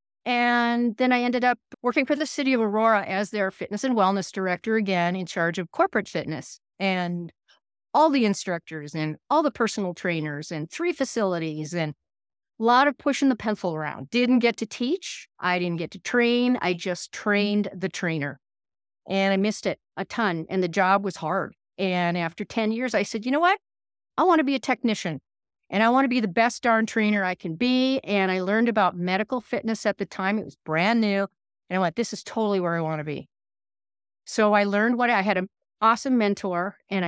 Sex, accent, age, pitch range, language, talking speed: female, American, 50-69, 180-235 Hz, English, 210 wpm